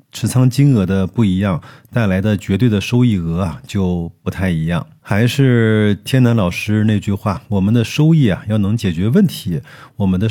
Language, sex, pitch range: Chinese, male, 100-130 Hz